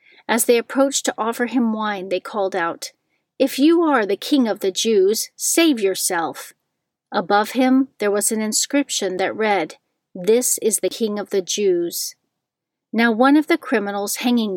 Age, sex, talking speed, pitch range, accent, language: 40-59, female, 170 wpm, 195-250 Hz, American, English